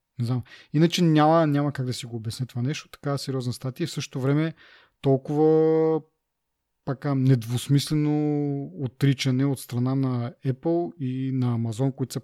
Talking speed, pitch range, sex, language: 150 wpm, 120-150 Hz, male, Bulgarian